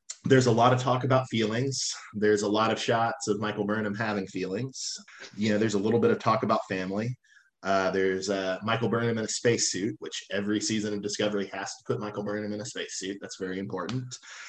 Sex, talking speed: male, 210 wpm